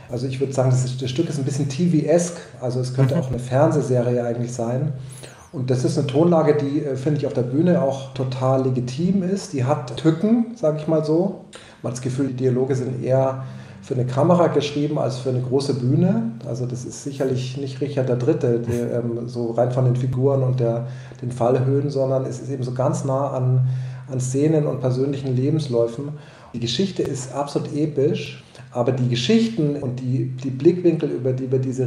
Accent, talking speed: German, 195 wpm